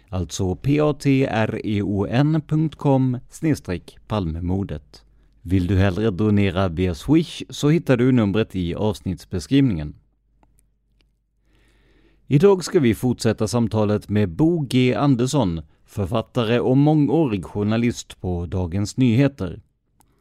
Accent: native